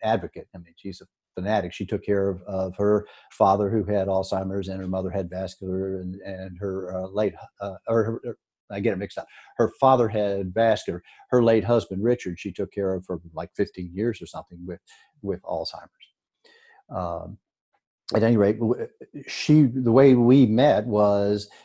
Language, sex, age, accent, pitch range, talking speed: English, male, 50-69, American, 95-110 Hz, 185 wpm